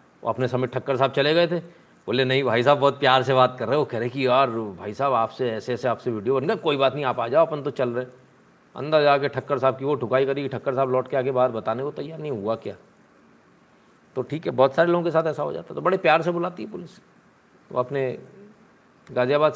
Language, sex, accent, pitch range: Hindi, male, native, 135-185 Hz